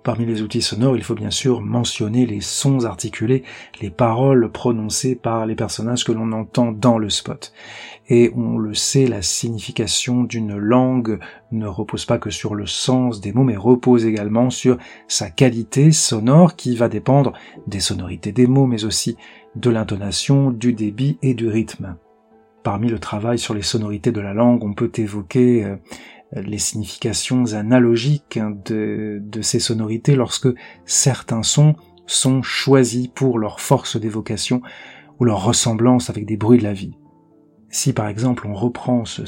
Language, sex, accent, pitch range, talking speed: French, male, French, 110-125 Hz, 165 wpm